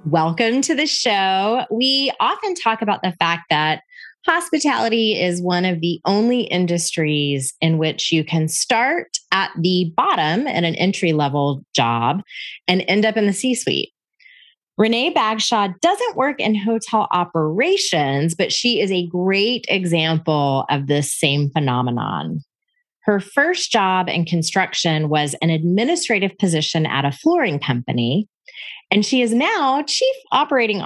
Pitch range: 160-225 Hz